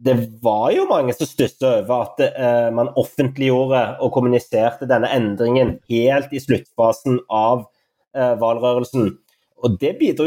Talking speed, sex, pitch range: 135 wpm, male, 125-145 Hz